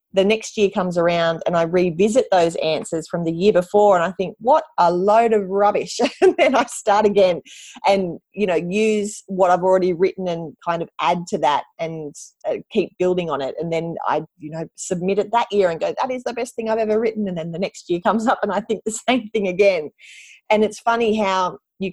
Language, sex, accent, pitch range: English, female, Australian, 160-205 Hz